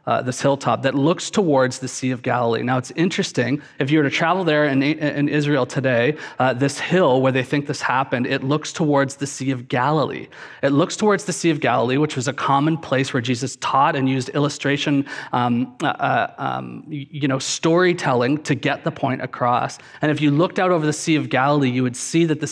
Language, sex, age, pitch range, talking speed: English, male, 30-49, 130-160 Hz, 220 wpm